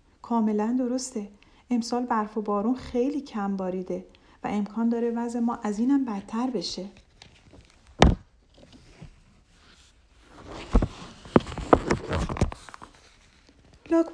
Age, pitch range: 40-59, 205-285 Hz